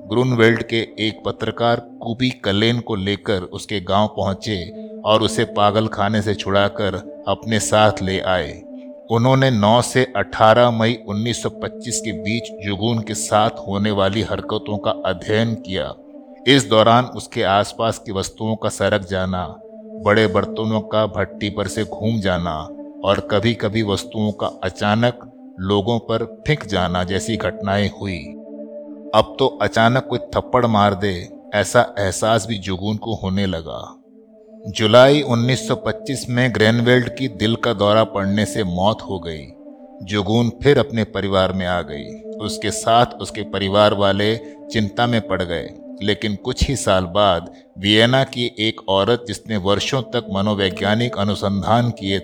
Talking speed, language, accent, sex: 145 wpm, Hindi, native, male